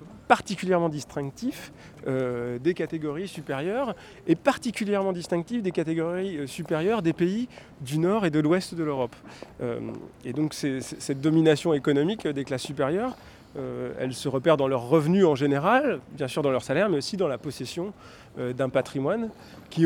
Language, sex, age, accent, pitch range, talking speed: French, male, 20-39, French, 135-170 Hz, 170 wpm